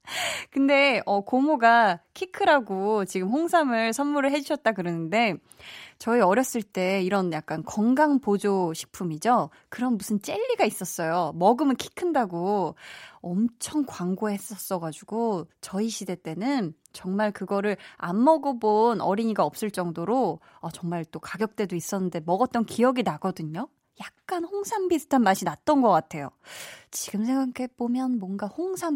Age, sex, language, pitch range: 20-39, female, Korean, 185-270 Hz